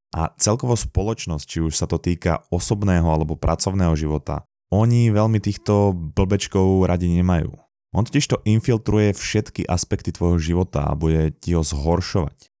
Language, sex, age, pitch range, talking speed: Slovak, male, 20-39, 80-100 Hz, 150 wpm